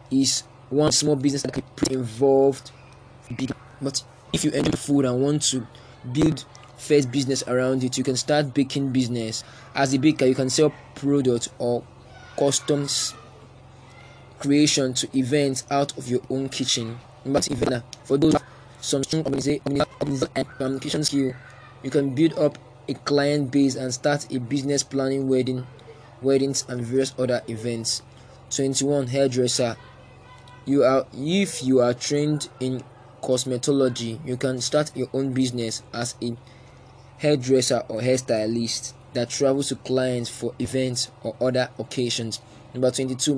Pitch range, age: 125-140 Hz, 20-39